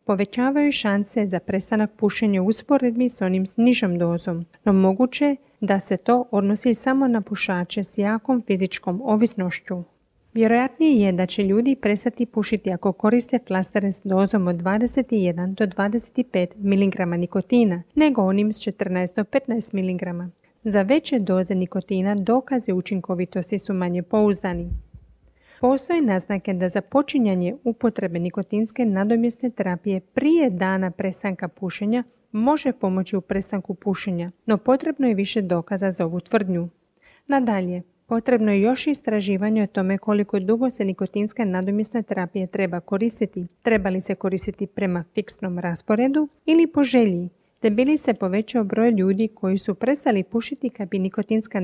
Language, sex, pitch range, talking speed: Croatian, female, 190-235 Hz, 140 wpm